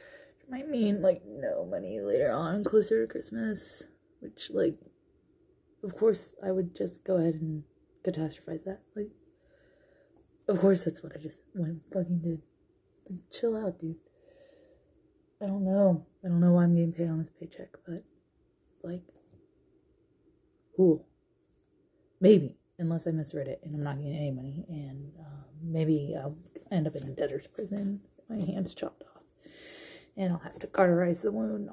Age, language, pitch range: 20-39, English, 170-275 Hz